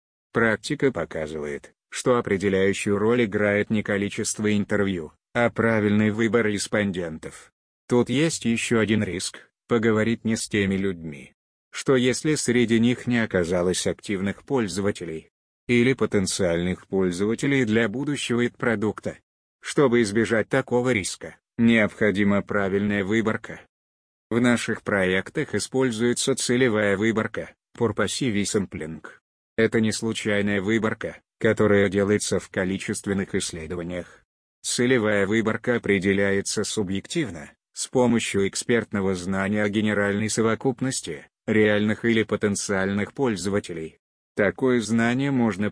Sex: male